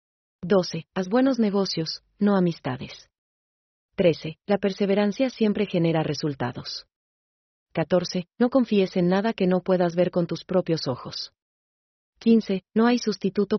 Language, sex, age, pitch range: German, female, 30-49, 160-195 Hz